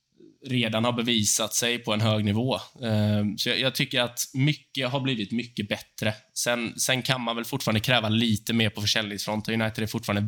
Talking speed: 185 wpm